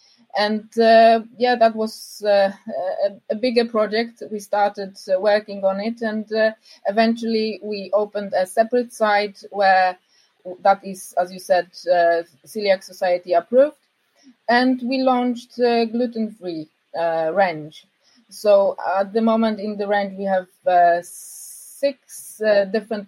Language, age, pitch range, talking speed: English, 20-39, 195-230 Hz, 140 wpm